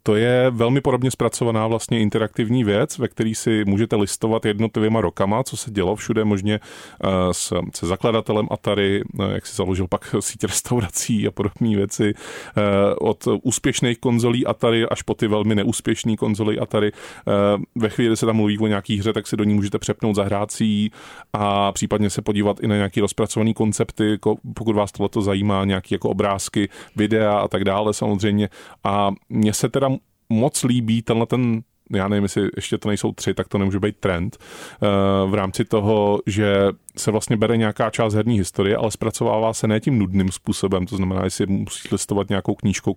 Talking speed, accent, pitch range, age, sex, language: 175 wpm, native, 100-115 Hz, 30-49, male, Czech